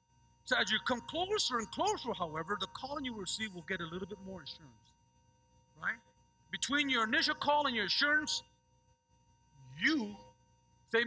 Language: English